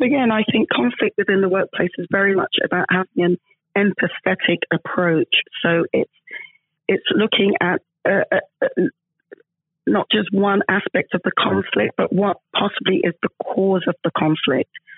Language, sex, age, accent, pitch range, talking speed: English, female, 30-49, British, 170-195 Hz, 150 wpm